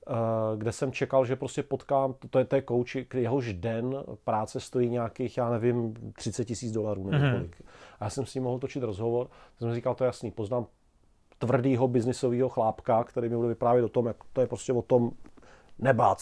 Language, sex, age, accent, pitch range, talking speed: Czech, male, 40-59, native, 120-140 Hz, 190 wpm